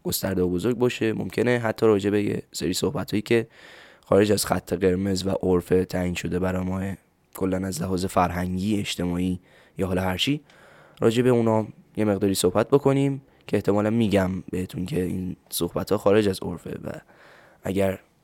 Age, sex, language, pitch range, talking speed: 10-29, male, Persian, 95-120 Hz, 160 wpm